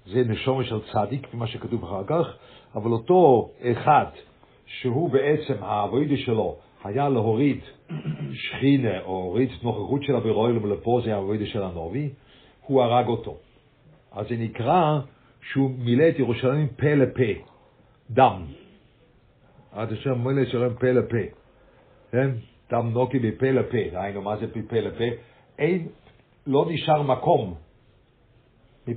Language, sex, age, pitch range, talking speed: English, male, 60-79, 115-140 Hz, 125 wpm